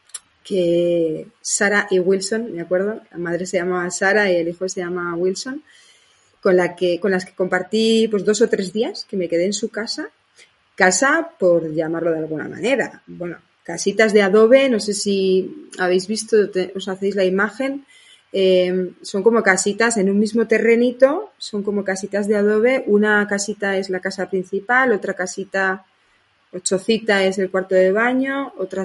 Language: Spanish